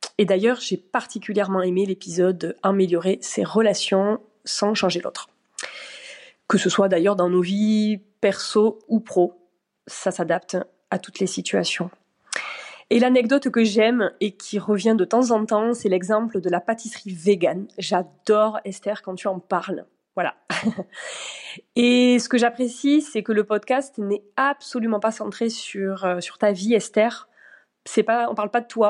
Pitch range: 190-230 Hz